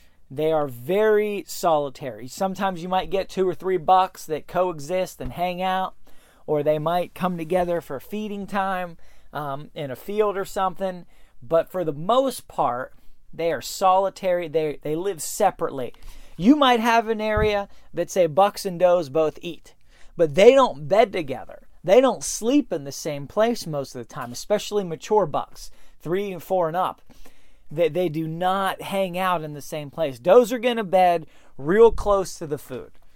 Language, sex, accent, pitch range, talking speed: English, male, American, 150-205 Hz, 180 wpm